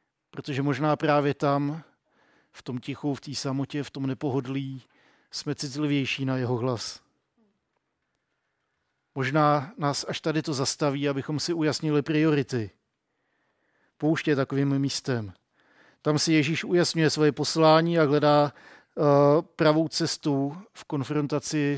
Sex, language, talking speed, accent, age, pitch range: male, Czech, 120 wpm, native, 50-69, 135-155 Hz